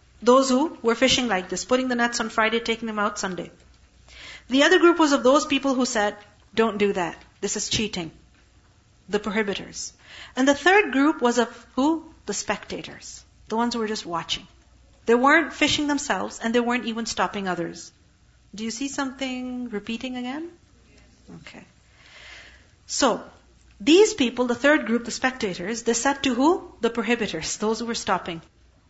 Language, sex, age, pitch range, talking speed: English, female, 40-59, 210-285 Hz, 170 wpm